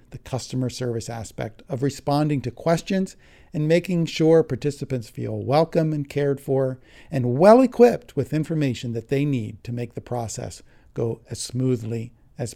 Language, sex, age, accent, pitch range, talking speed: English, male, 50-69, American, 125-160 Hz, 160 wpm